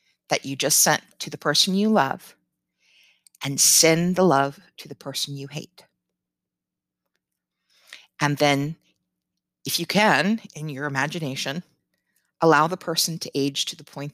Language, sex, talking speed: English, female, 145 wpm